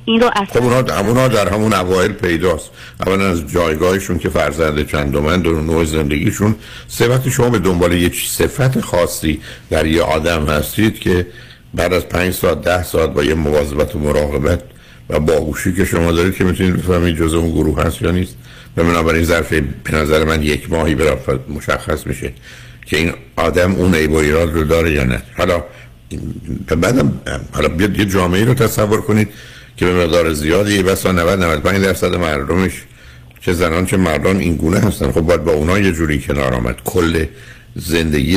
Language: Persian